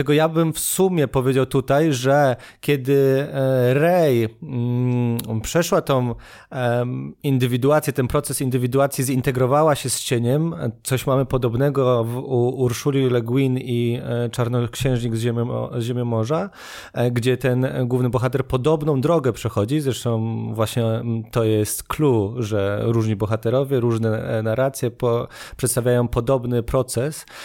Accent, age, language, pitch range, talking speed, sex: native, 30-49, Polish, 120-150 Hz, 115 wpm, male